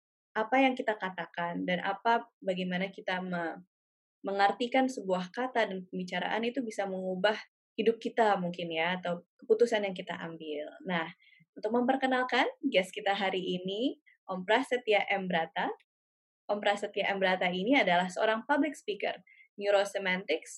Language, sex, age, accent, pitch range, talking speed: English, female, 20-39, Indonesian, 185-250 Hz, 125 wpm